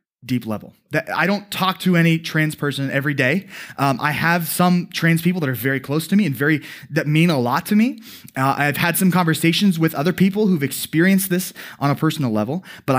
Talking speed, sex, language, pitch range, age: 215 wpm, male, English, 135-185 Hz, 20-39